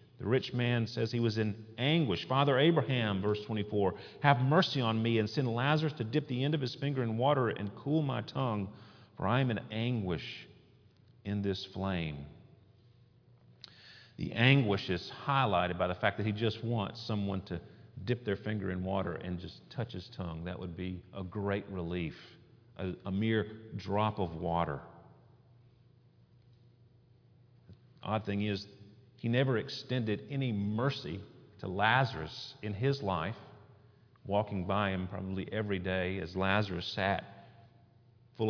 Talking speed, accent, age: 155 wpm, American, 40-59